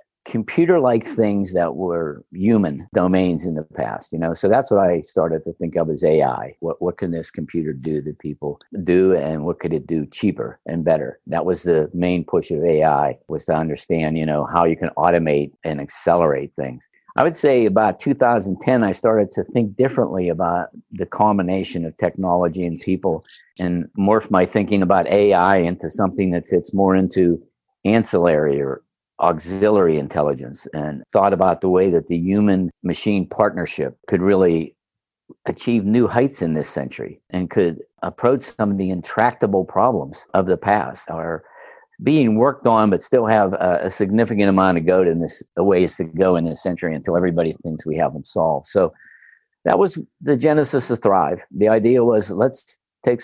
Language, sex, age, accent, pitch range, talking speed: English, male, 50-69, American, 85-105 Hz, 180 wpm